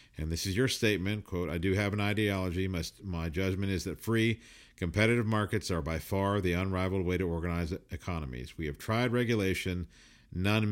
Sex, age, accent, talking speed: male, 50-69, American, 185 wpm